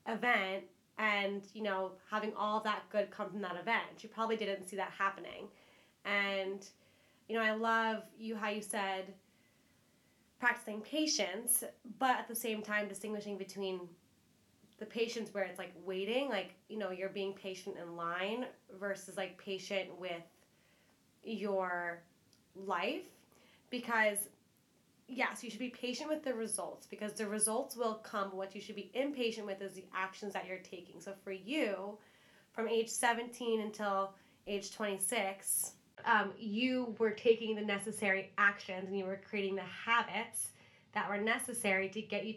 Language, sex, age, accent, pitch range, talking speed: English, female, 20-39, American, 190-225 Hz, 155 wpm